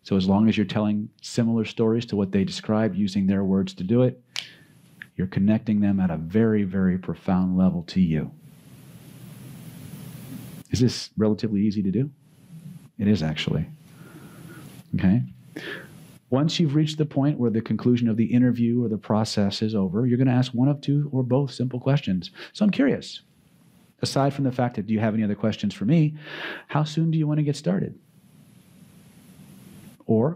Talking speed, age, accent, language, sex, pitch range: 175 wpm, 40-59, American, English, male, 105-160 Hz